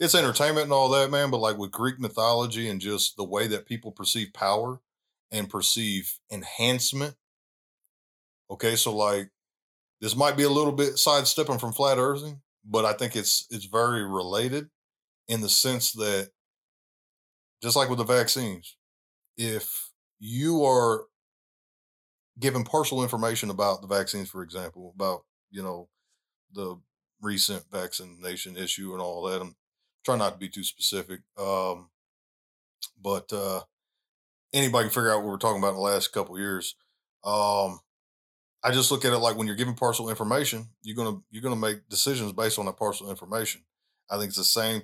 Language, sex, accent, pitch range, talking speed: English, male, American, 100-125 Hz, 165 wpm